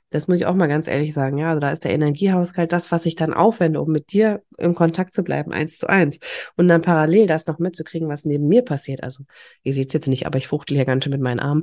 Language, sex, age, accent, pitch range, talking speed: German, female, 30-49, German, 160-195 Hz, 280 wpm